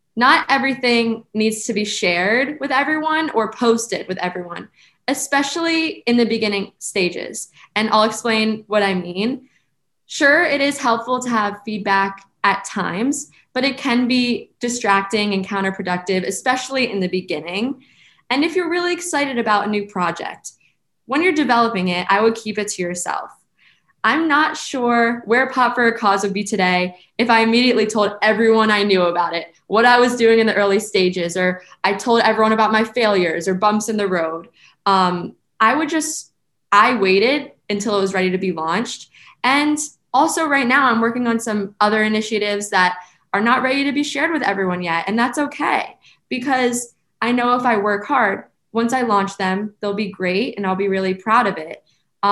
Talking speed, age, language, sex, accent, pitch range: 180 wpm, 20-39, English, female, American, 195-250 Hz